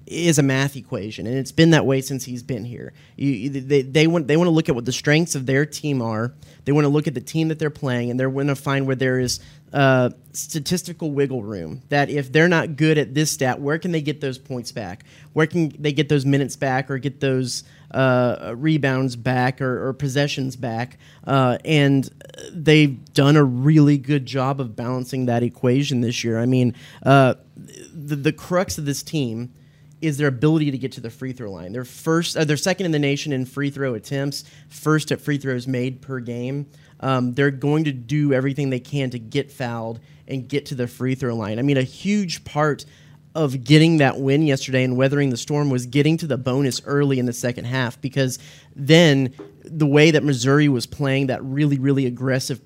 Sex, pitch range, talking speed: male, 130-150 Hz, 215 wpm